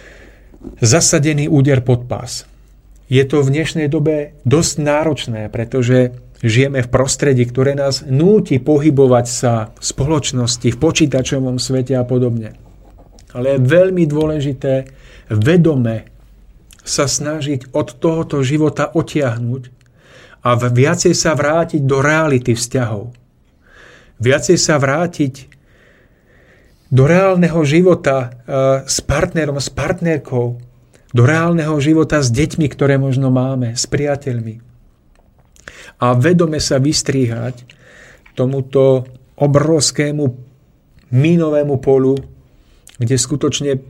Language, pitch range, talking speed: Slovak, 125-150 Hz, 105 wpm